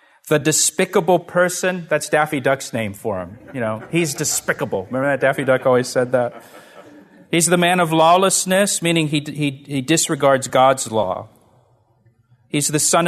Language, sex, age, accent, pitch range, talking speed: English, male, 40-59, American, 120-155 Hz, 160 wpm